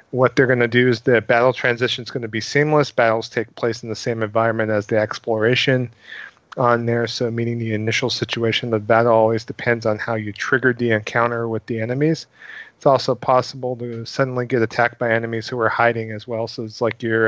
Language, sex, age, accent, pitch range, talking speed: English, male, 40-59, American, 110-130 Hz, 220 wpm